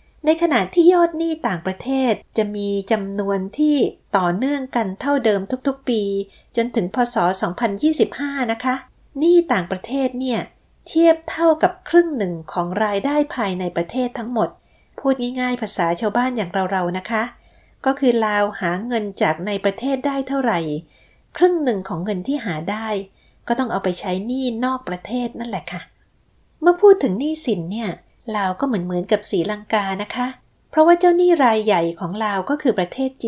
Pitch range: 195-270 Hz